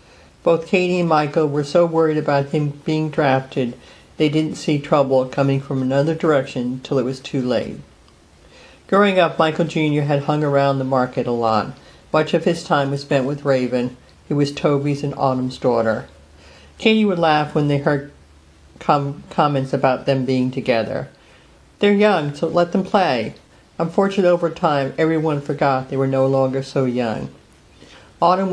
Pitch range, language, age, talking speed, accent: 135-160 Hz, English, 50-69, 165 wpm, American